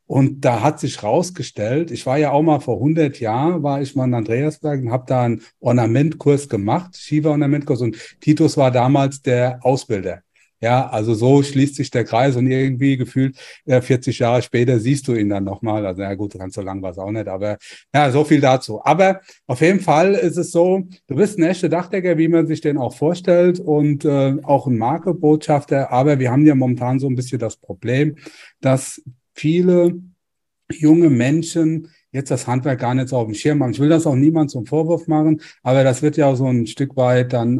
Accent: German